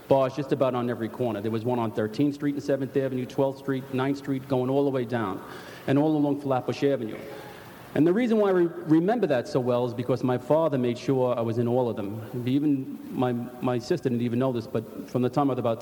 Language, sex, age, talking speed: English, male, 40-59, 245 wpm